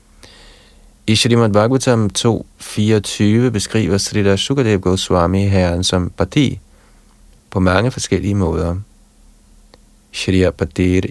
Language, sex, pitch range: Danish, male, 90-105 Hz